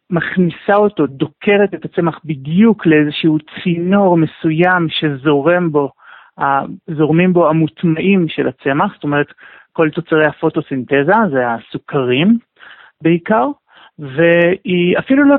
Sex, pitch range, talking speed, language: male, 155-210 Hz, 100 wpm, Hebrew